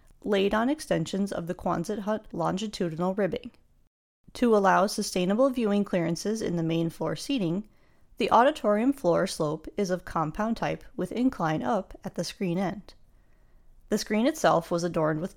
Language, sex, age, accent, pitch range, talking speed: English, female, 30-49, American, 160-220 Hz, 155 wpm